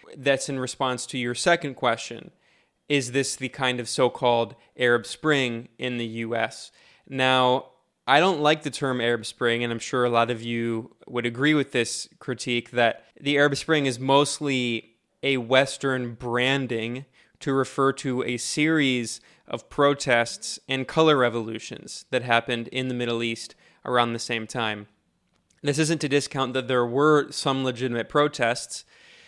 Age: 20-39